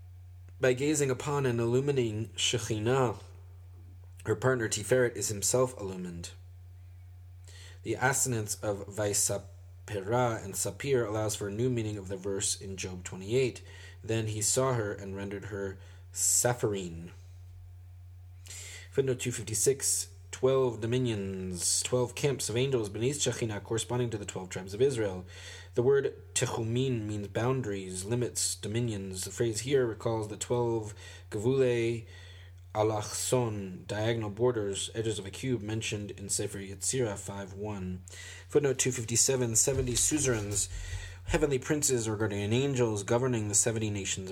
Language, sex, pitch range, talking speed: English, male, 95-120 Hz, 125 wpm